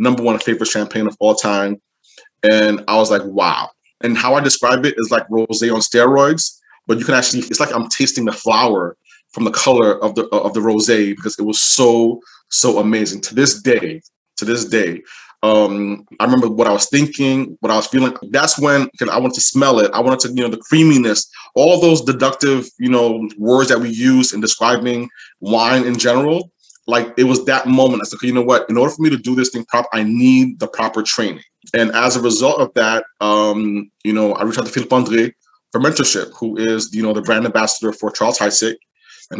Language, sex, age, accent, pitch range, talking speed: English, male, 20-39, American, 110-135 Hz, 220 wpm